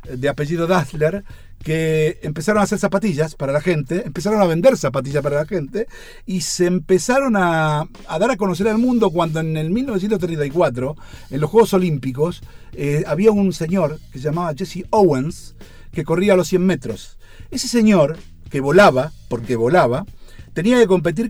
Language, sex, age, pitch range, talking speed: Spanish, male, 50-69, 145-200 Hz, 170 wpm